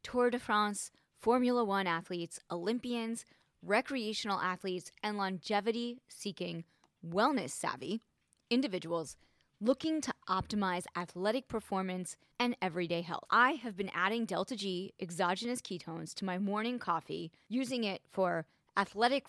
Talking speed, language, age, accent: 115 wpm, English, 20-39, American